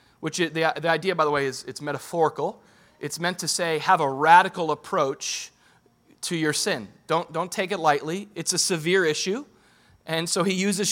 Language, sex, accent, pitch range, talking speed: English, male, American, 160-215 Hz, 185 wpm